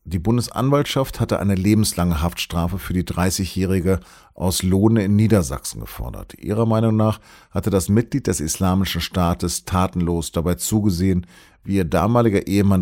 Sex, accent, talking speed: male, German, 140 wpm